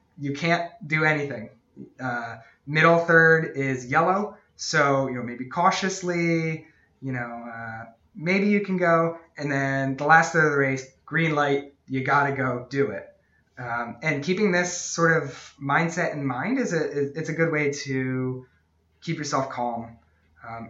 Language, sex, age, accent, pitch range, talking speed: English, male, 20-39, American, 120-155 Hz, 160 wpm